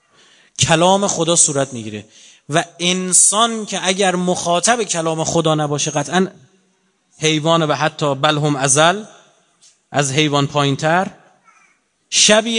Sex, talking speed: male, 105 wpm